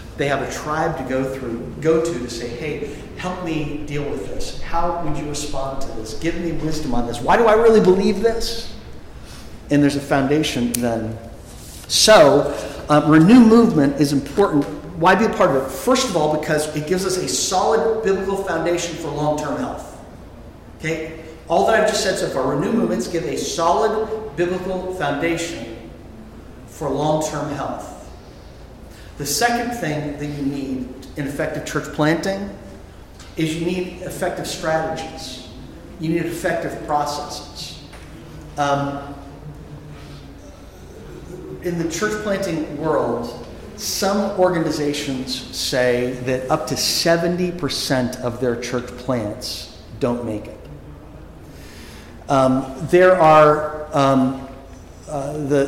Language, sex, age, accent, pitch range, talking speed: English, male, 50-69, American, 130-170 Hz, 140 wpm